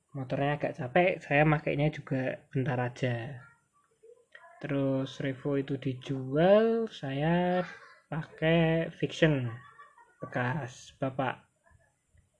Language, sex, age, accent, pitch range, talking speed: Indonesian, male, 20-39, native, 140-175 Hz, 80 wpm